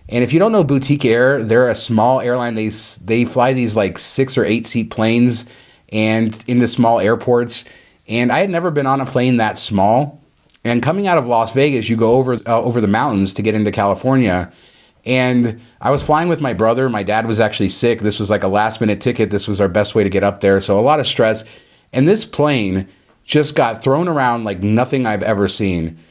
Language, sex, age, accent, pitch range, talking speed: English, male, 30-49, American, 110-145 Hz, 225 wpm